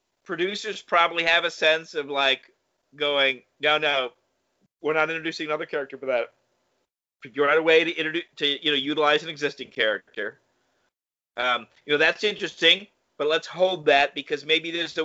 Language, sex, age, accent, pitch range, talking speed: English, male, 40-59, American, 140-175 Hz, 170 wpm